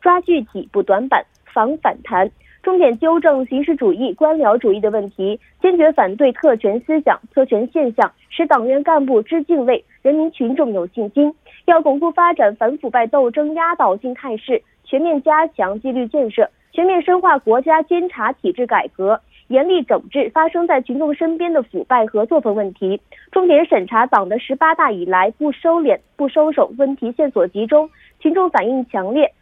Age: 30-49